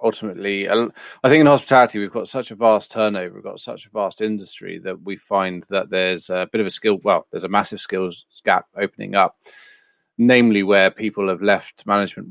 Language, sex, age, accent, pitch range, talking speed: English, male, 30-49, British, 95-110 Hz, 200 wpm